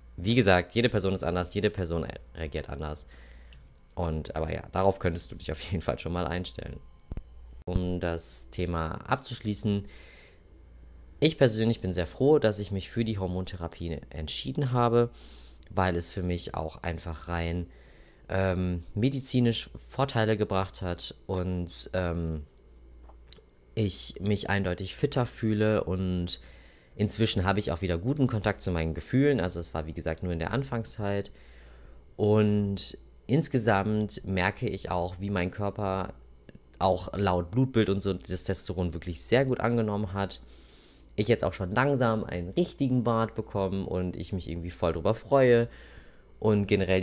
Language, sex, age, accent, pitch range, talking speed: German, male, 20-39, German, 80-105 Hz, 150 wpm